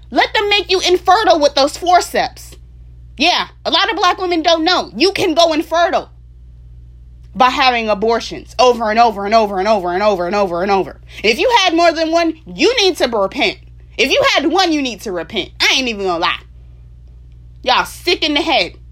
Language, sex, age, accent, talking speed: English, female, 20-39, American, 205 wpm